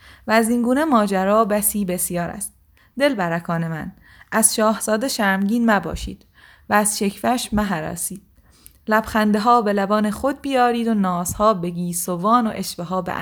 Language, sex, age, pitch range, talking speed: Persian, female, 20-39, 175-230 Hz, 150 wpm